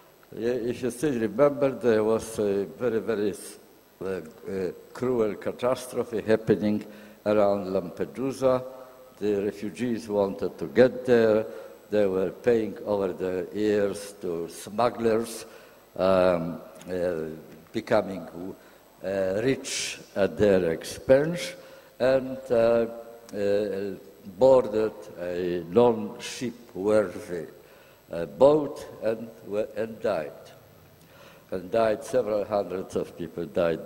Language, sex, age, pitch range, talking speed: Italian, male, 60-79, 100-130 Hz, 100 wpm